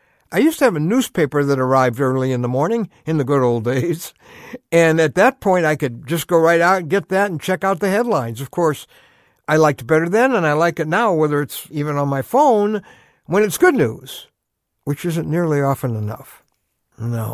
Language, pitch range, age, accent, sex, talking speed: English, 130-190 Hz, 60-79, American, male, 220 wpm